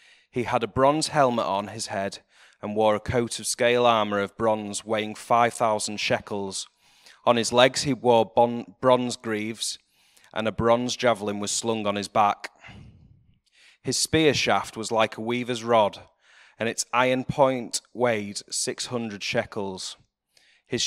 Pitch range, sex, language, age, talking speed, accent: 105-130 Hz, male, English, 30-49, 150 wpm, British